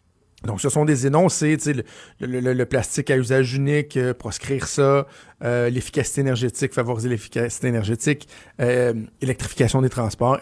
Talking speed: 155 wpm